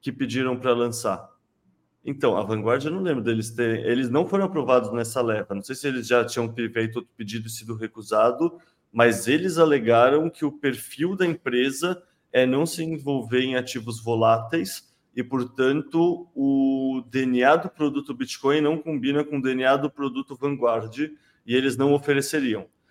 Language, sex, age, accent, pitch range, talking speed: Portuguese, male, 20-39, Brazilian, 115-145 Hz, 170 wpm